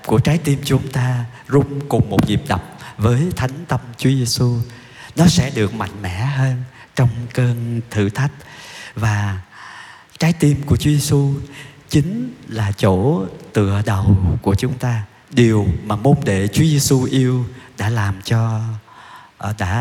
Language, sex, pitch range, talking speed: Vietnamese, male, 105-130 Hz, 150 wpm